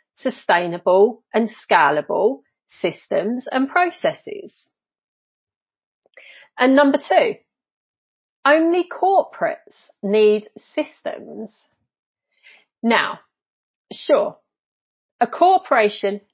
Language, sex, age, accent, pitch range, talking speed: English, female, 40-59, British, 220-320 Hz, 60 wpm